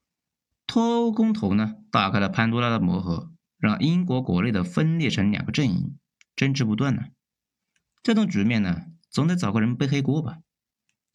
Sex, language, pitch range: male, Chinese, 115-180 Hz